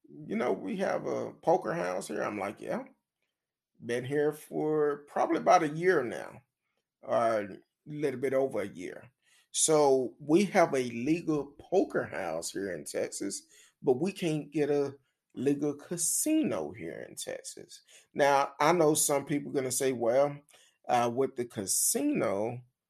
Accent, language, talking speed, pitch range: American, English, 155 wpm, 130-165 Hz